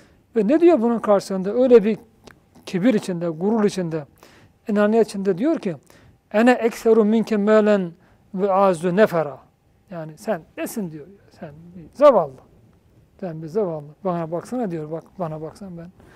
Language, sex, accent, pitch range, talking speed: Turkish, male, native, 165-210 Hz, 140 wpm